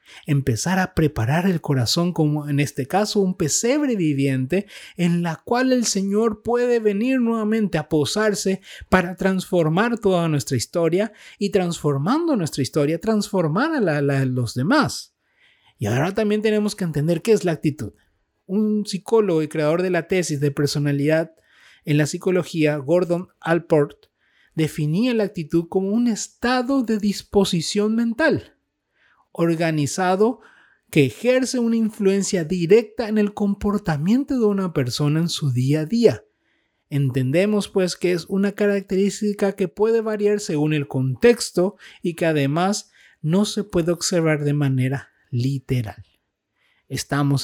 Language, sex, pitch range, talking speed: Spanish, male, 155-215 Hz, 135 wpm